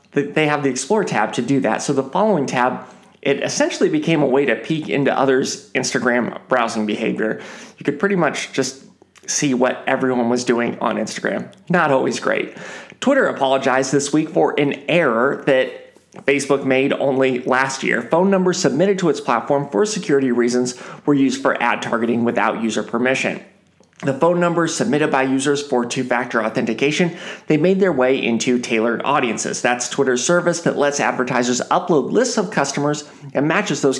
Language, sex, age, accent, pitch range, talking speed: English, male, 30-49, American, 130-180 Hz, 175 wpm